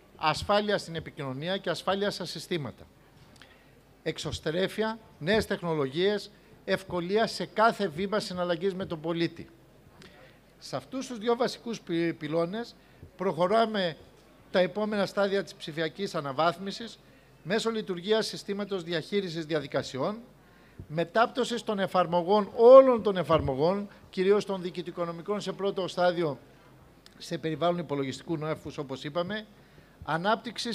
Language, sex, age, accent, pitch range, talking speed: Greek, male, 60-79, native, 165-200 Hz, 105 wpm